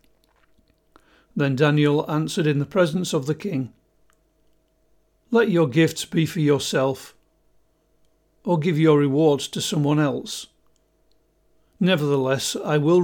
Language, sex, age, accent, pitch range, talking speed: English, male, 50-69, British, 150-170 Hz, 115 wpm